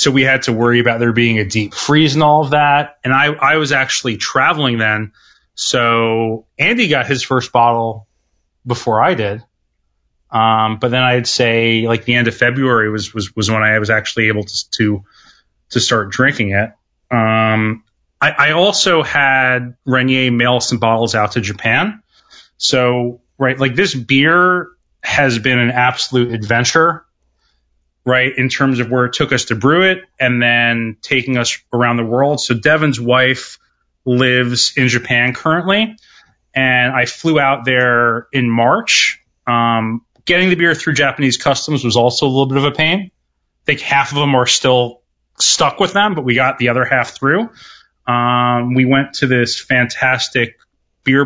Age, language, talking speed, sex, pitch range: 30-49, English, 175 wpm, male, 115-140 Hz